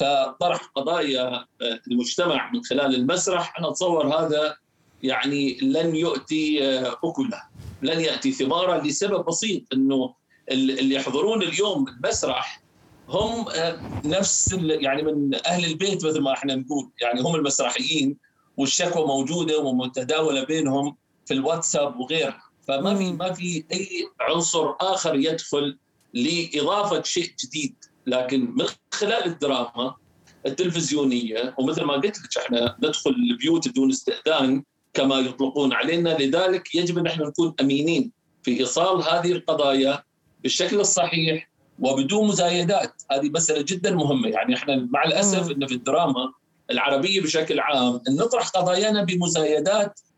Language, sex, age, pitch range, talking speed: Arabic, male, 50-69, 135-185 Hz, 125 wpm